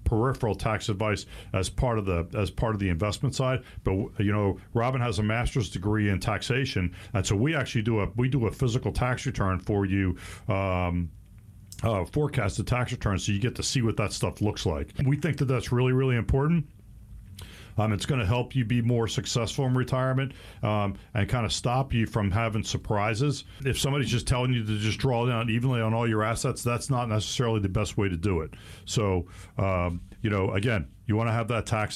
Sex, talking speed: male, 215 wpm